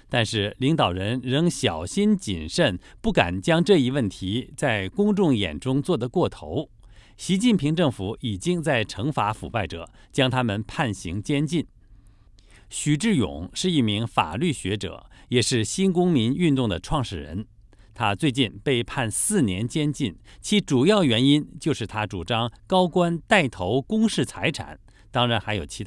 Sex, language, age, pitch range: male, English, 50-69, 105-150 Hz